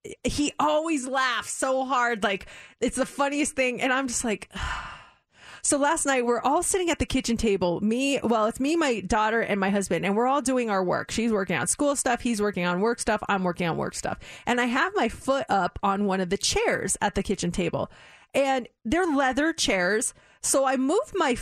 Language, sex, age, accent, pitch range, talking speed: English, female, 20-39, American, 205-280 Hz, 215 wpm